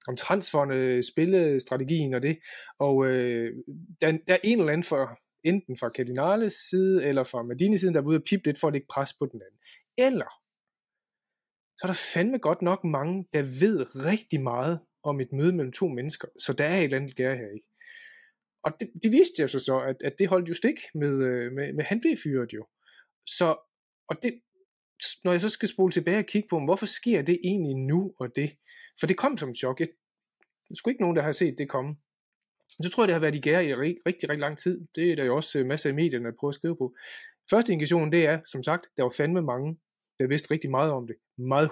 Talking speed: 230 wpm